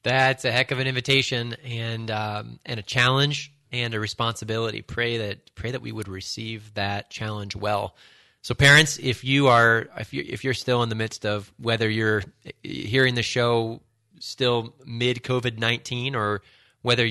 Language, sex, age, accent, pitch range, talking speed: English, male, 30-49, American, 105-120 Hz, 170 wpm